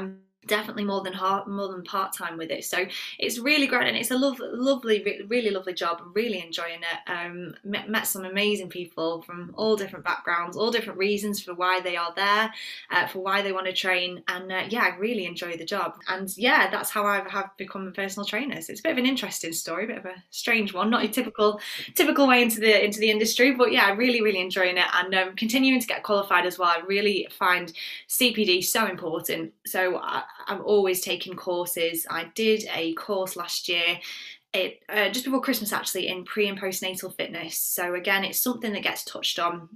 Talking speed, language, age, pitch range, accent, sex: 220 wpm, English, 20-39, 180-220 Hz, British, female